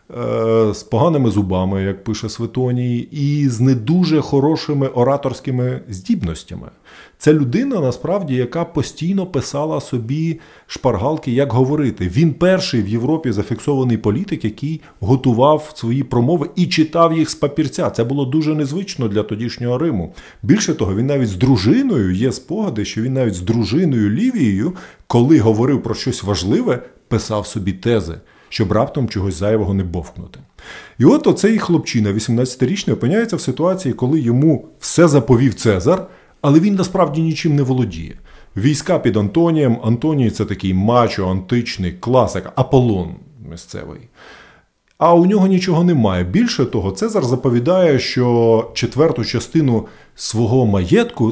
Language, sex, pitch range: Ukrainian, male, 110-155 Hz